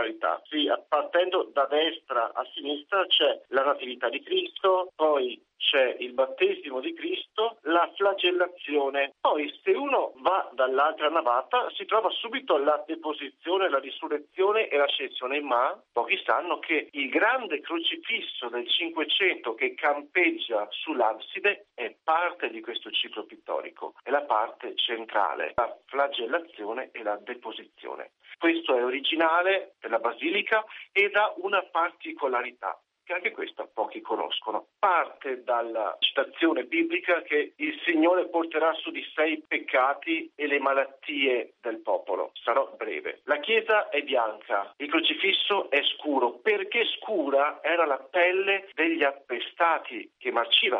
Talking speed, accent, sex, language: 130 wpm, native, male, Italian